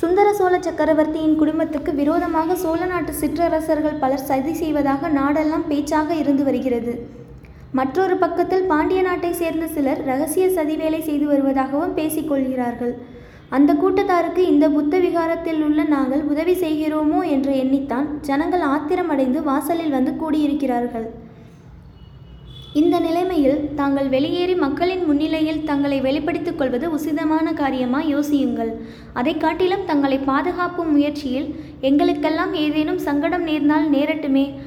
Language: Tamil